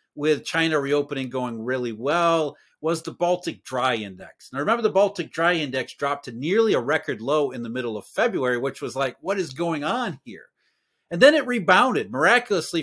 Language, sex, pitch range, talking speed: English, male, 150-215 Hz, 190 wpm